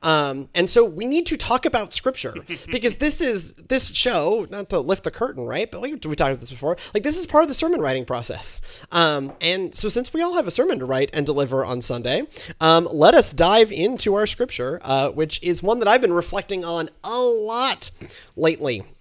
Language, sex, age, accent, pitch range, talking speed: English, male, 30-49, American, 115-165 Hz, 220 wpm